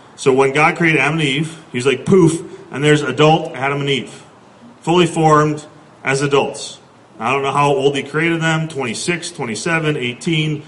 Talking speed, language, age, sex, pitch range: 175 wpm, English, 40-59, male, 140-170 Hz